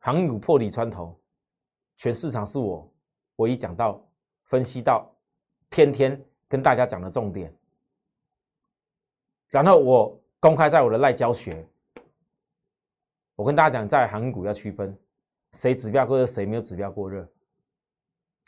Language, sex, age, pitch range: Chinese, male, 30-49, 100-145 Hz